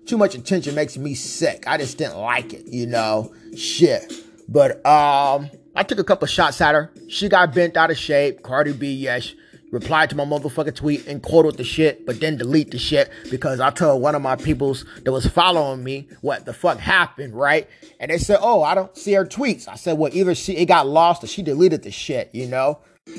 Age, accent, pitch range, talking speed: 30-49, American, 135-180 Hz, 225 wpm